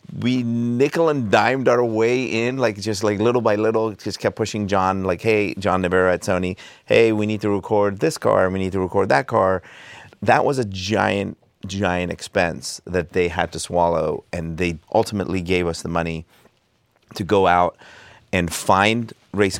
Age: 30-49